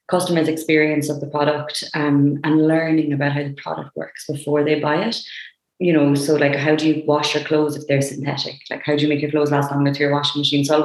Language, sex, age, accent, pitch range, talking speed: English, female, 20-39, Irish, 145-160 Hz, 250 wpm